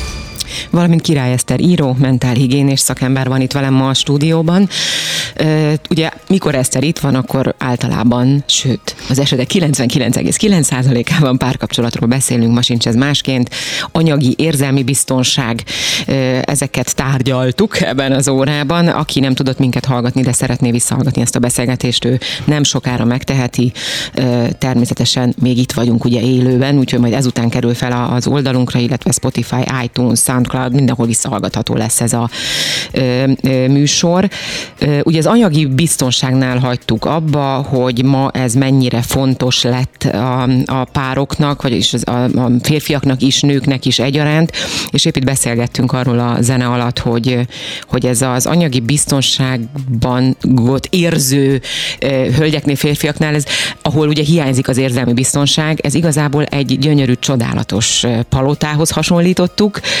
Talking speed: 130 wpm